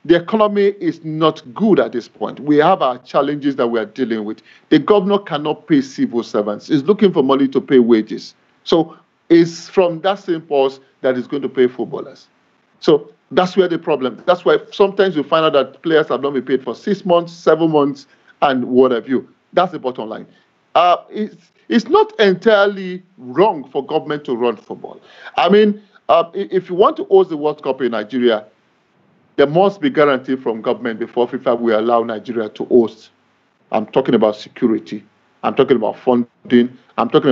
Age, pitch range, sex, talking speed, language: 50-69, 125-195 Hz, male, 195 wpm, English